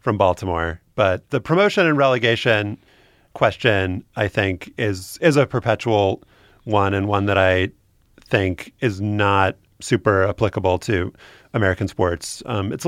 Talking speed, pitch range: 140 wpm, 95-120 Hz